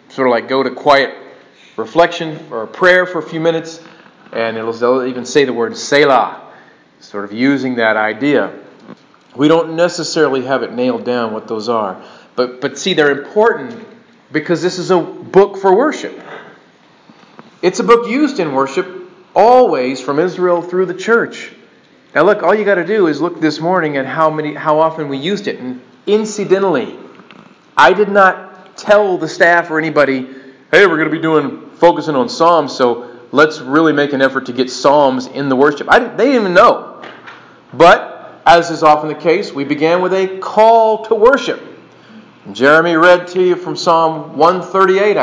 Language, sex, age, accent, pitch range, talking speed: English, male, 40-59, American, 140-190 Hz, 180 wpm